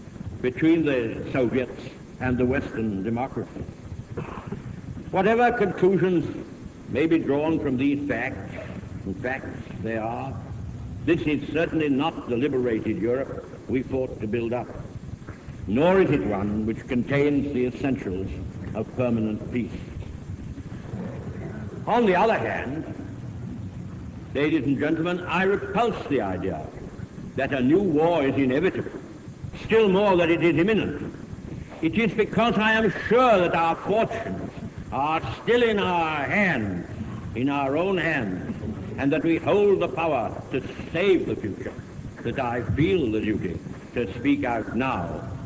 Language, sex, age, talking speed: Russian, male, 70-89, 135 wpm